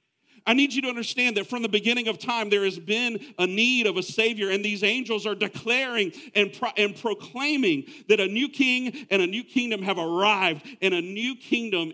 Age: 50-69